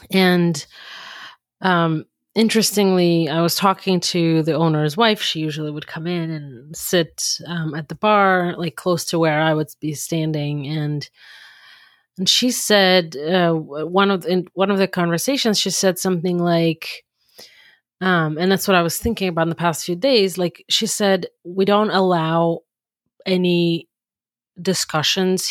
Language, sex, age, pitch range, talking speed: English, female, 30-49, 160-195 Hz, 160 wpm